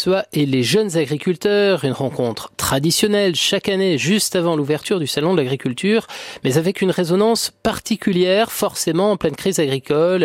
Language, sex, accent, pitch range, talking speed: French, male, French, 130-185 Hz, 150 wpm